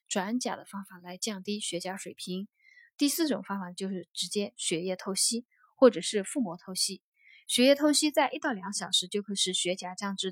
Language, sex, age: Chinese, female, 20-39